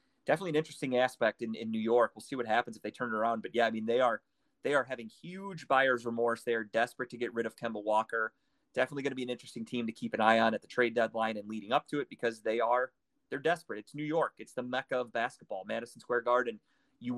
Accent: American